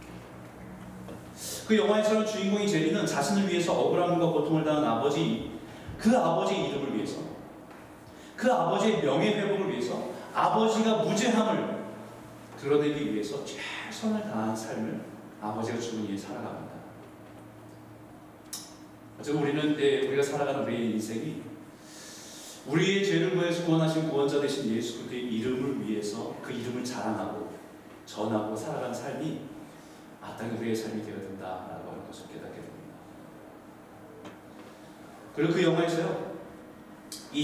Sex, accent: male, native